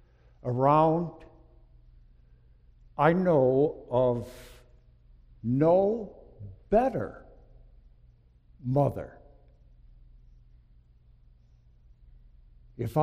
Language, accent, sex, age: English, American, male, 60-79